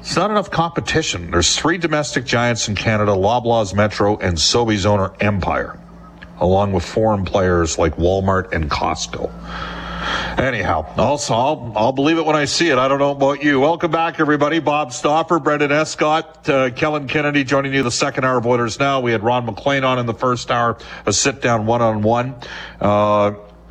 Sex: male